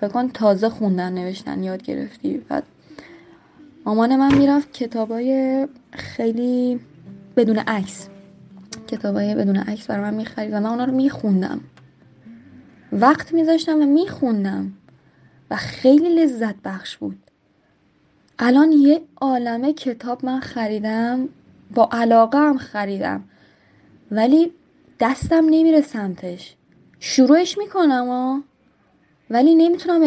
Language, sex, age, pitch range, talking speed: Persian, female, 10-29, 195-260 Hz, 110 wpm